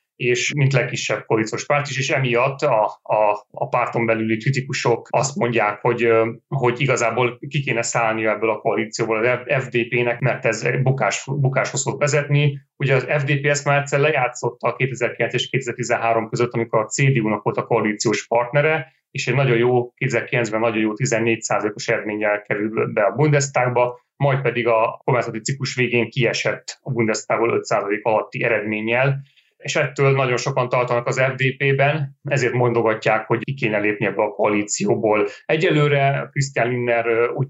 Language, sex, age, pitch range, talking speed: Hungarian, male, 30-49, 115-135 Hz, 155 wpm